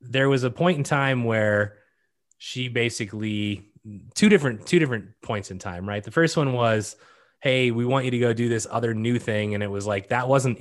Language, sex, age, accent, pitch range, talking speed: English, male, 20-39, American, 105-140 Hz, 215 wpm